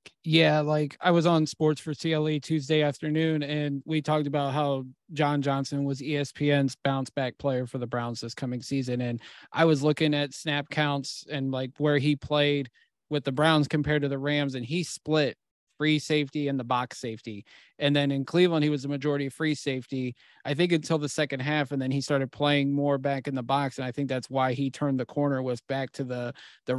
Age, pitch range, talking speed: 30-49, 135-150 Hz, 215 wpm